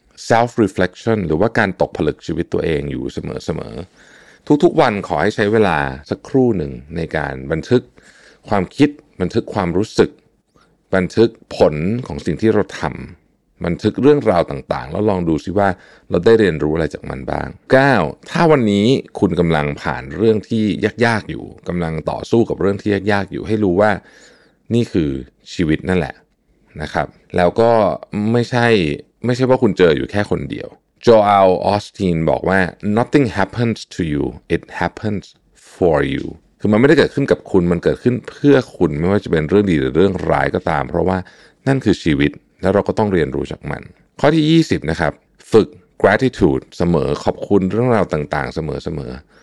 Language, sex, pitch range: Thai, male, 80-115 Hz